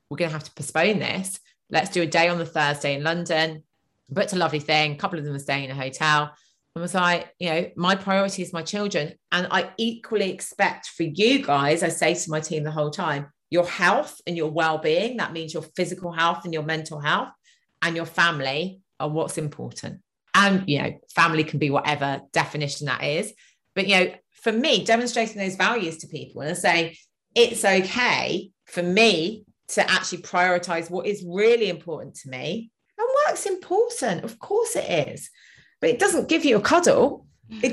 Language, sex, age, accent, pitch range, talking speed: English, female, 30-49, British, 155-220 Hz, 200 wpm